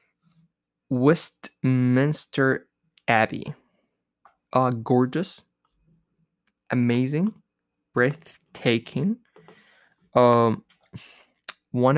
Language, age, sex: English, 20-39, male